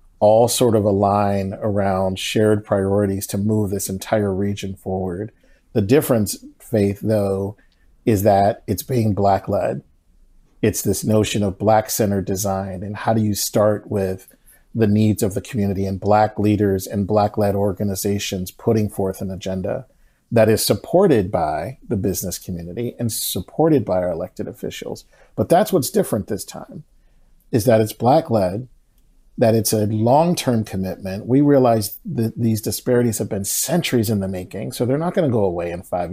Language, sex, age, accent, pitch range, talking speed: English, male, 50-69, American, 95-120 Hz, 160 wpm